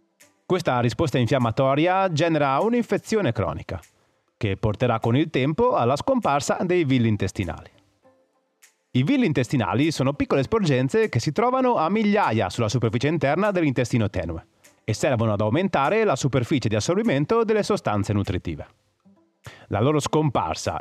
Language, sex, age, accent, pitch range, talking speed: Italian, male, 30-49, native, 110-160 Hz, 135 wpm